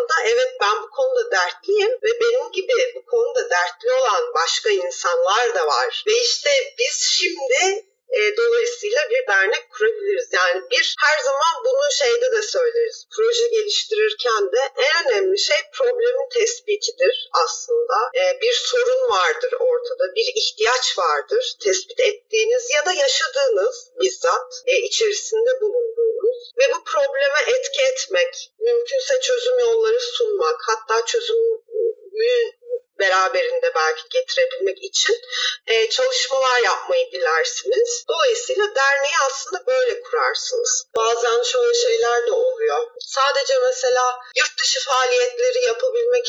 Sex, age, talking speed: female, 40-59, 120 wpm